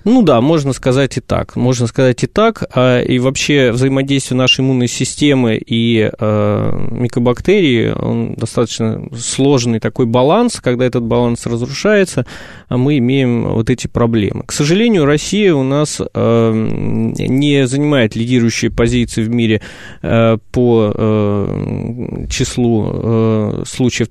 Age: 20-39